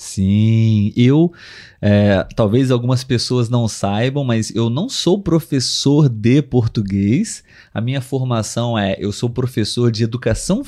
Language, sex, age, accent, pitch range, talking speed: Portuguese, male, 30-49, Brazilian, 110-155 Hz, 135 wpm